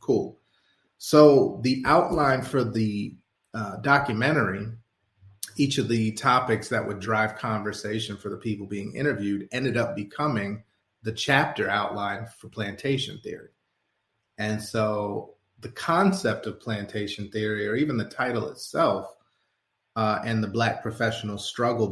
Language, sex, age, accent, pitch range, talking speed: English, male, 30-49, American, 105-120 Hz, 130 wpm